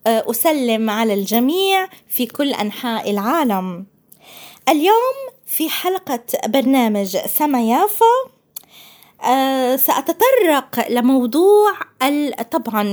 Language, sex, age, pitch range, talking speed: Arabic, female, 20-39, 220-330 Hz, 75 wpm